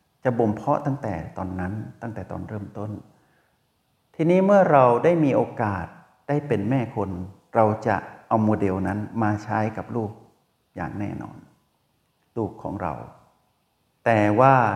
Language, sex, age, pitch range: Thai, male, 60-79, 95-115 Hz